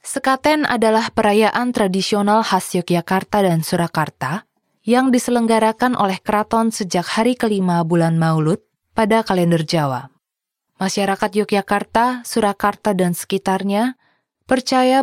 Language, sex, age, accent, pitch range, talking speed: English, female, 20-39, Indonesian, 175-225 Hz, 105 wpm